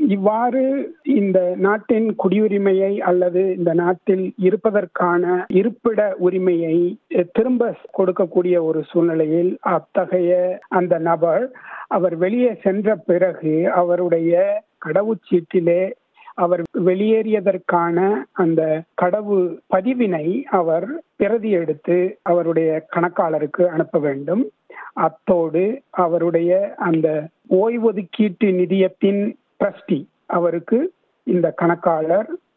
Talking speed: 85 wpm